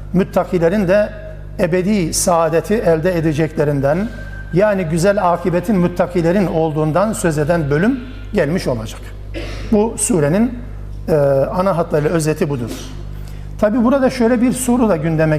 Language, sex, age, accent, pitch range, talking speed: Turkish, male, 60-79, native, 160-205 Hz, 115 wpm